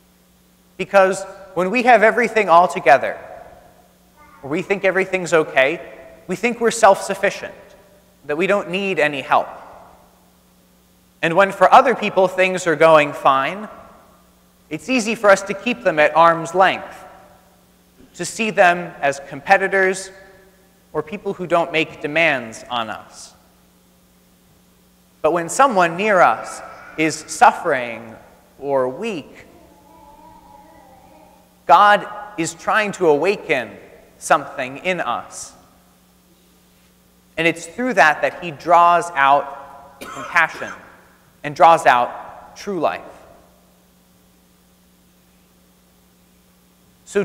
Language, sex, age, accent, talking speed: English, male, 30-49, American, 110 wpm